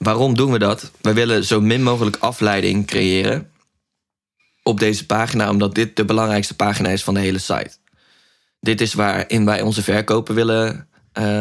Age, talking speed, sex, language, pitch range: 20-39, 170 wpm, male, Dutch, 100-110 Hz